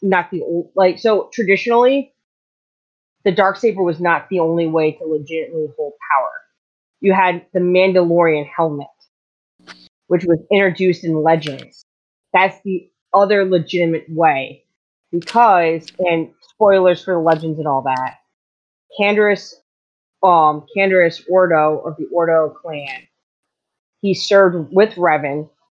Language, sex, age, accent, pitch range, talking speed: English, female, 30-49, American, 155-185 Hz, 125 wpm